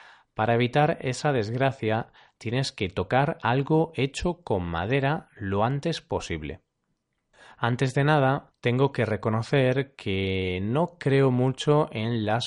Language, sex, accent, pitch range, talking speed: Spanish, male, Spanish, 110-150 Hz, 125 wpm